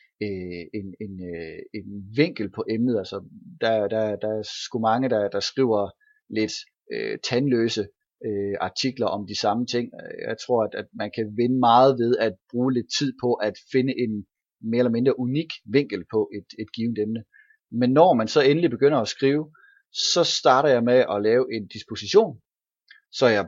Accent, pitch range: native, 110-145 Hz